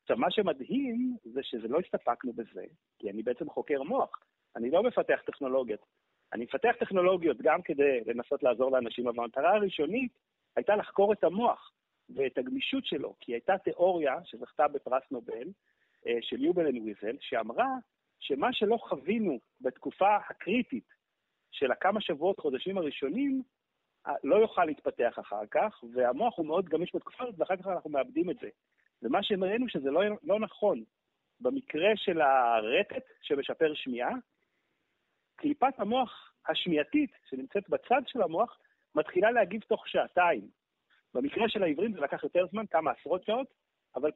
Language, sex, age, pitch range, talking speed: Hebrew, male, 40-59, 160-265 Hz, 140 wpm